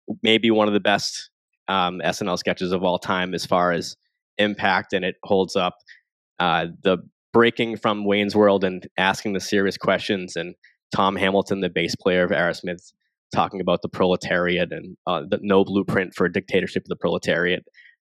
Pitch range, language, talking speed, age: 95-110 Hz, English, 175 wpm, 10-29